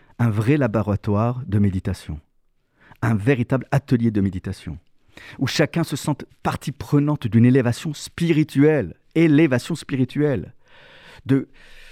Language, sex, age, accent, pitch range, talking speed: French, male, 50-69, French, 105-145 Hz, 110 wpm